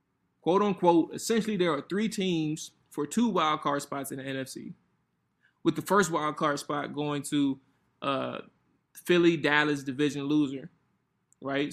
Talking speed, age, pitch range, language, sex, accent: 150 wpm, 20-39, 140-165 Hz, English, male, American